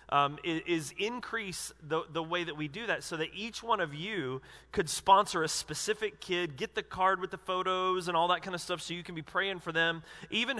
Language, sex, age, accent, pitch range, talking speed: English, male, 30-49, American, 140-185 Hz, 230 wpm